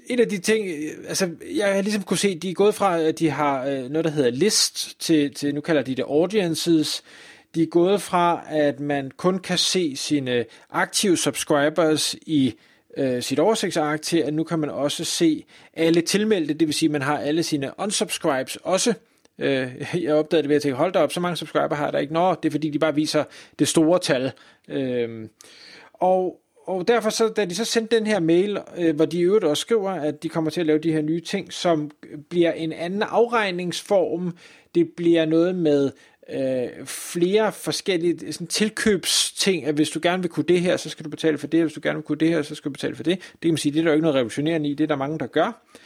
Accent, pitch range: native, 150-185 Hz